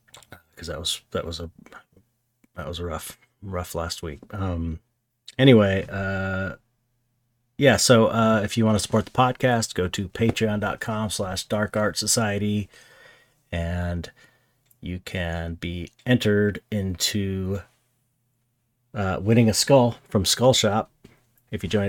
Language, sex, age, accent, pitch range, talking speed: English, male, 40-59, American, 90-115 Hz, 130 wpm